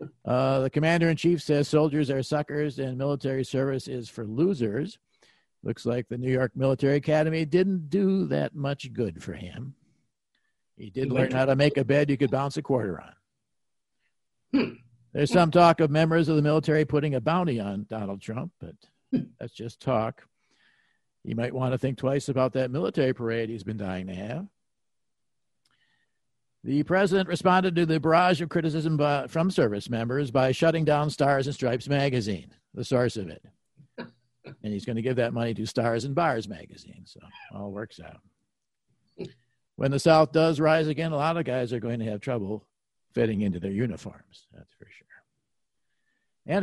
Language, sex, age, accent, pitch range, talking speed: English, male, 50-69, American, 120-155 Hz, 175 wpm